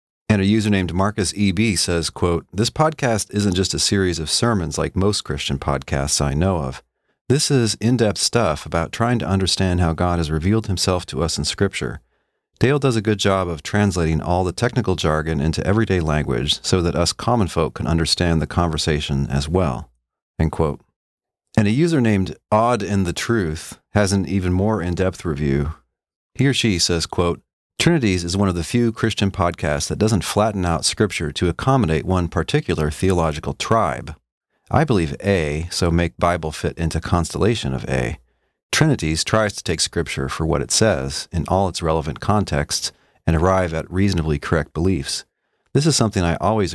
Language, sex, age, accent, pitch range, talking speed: English, male, 40-59, American, 80-105 Hz, 180 wpm